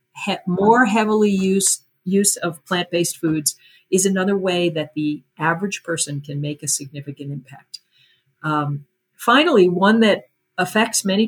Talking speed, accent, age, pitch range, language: 135 wpm, American, 50-69, 150-195 Hz, English